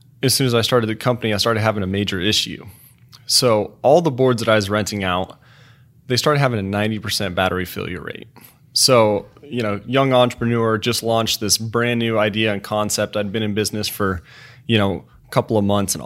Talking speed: 205 wpm